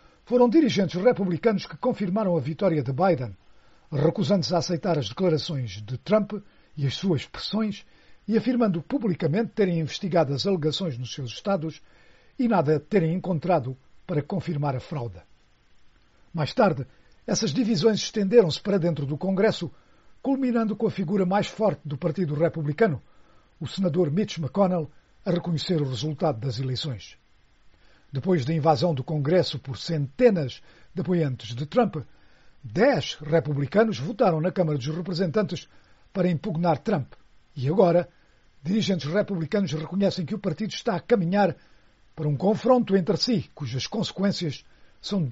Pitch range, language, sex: 150-200 Hz, Portuguese, male